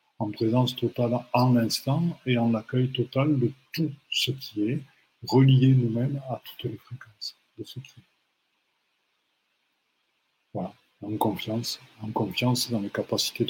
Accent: French